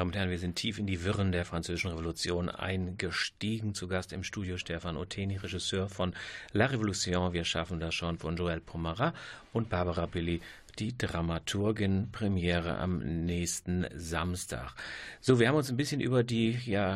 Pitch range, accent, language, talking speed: 90-110 Hz, German, German, 165 wpm